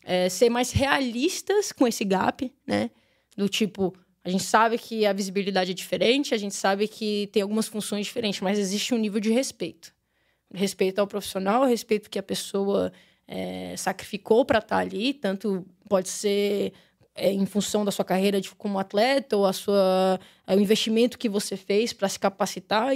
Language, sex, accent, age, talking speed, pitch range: Portuguese, female, Brazilian, 10-29, 160 wpm, 200-250 Hz